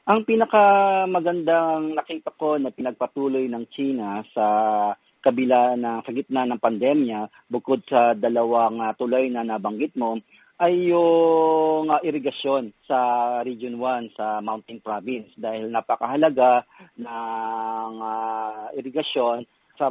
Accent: native